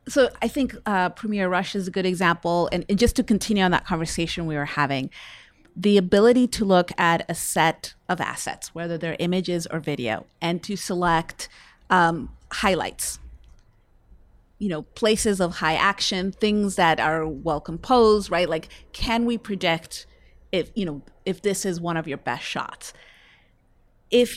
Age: 30-49